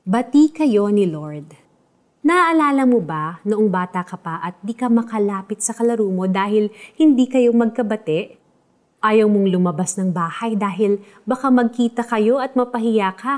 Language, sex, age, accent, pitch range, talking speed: Filipino, female, 30-49, native, 185-240 Hz, 150 wpm